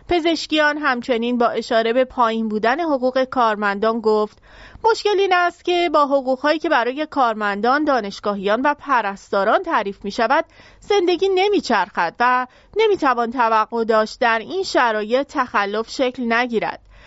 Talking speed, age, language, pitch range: 135 wpm, 30-49, English, 225-300 Hz